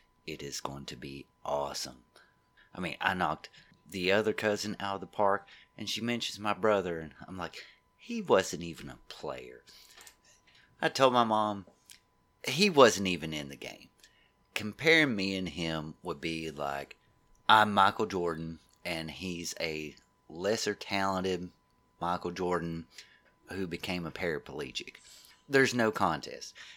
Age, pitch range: 30-49, 85-120 Hz